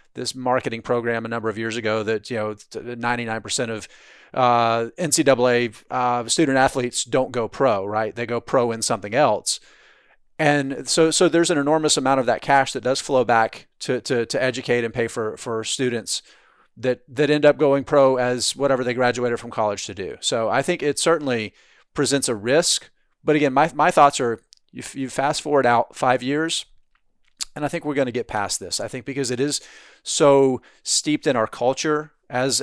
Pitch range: 115-140 Hz